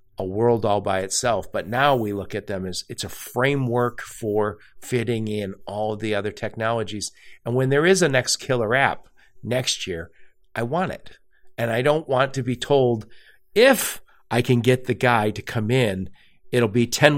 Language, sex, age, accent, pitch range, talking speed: English, male, 50-69, American, 100-130 Hz, 190 wpm